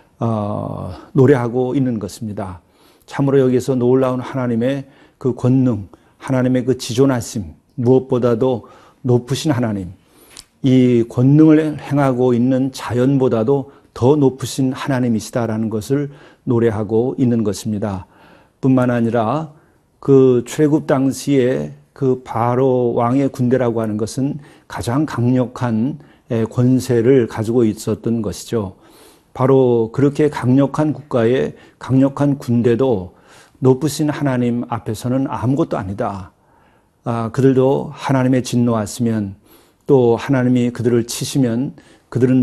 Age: 40-59